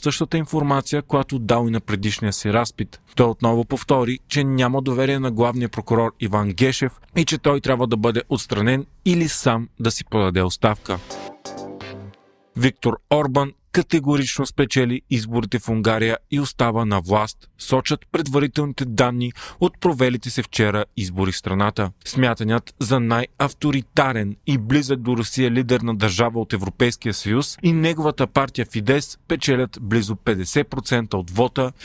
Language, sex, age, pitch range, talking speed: Bulgarian, male, 40-59, 115-140 Hz, 140 wpm